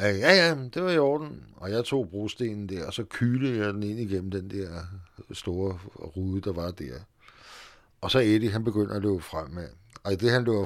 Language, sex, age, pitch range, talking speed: Danish, male, 60-79, 100-120 Hz, 215 wpm